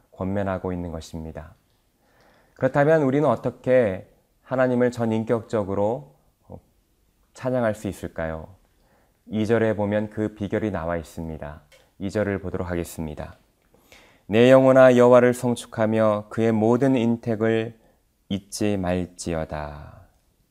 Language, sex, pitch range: Korean, male, 95-125 Hz